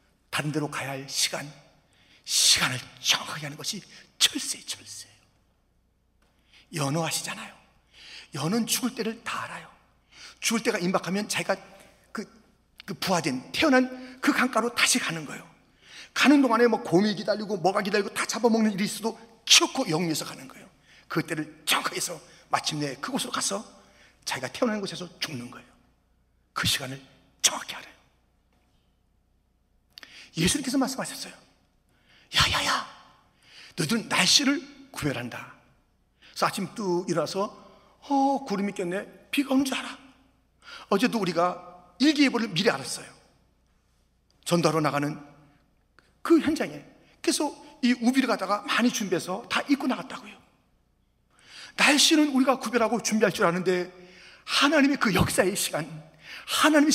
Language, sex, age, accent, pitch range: Korean, male, 40-59, native, 155-250 Hz